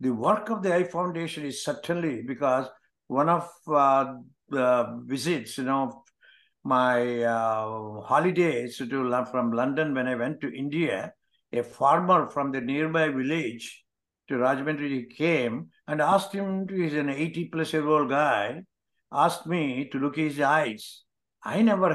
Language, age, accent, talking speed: English, 60-79, Indian, 145 wpm